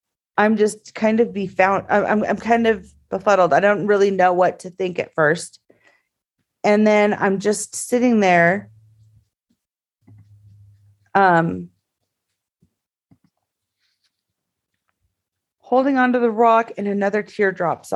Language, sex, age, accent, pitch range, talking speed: English, female, 30-49, American, 180-210 Hz, 115 wpm